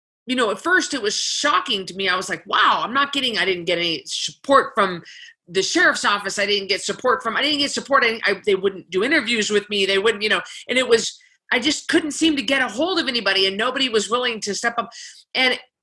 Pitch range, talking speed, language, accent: 190-305 Hz, 245 wpm, English, American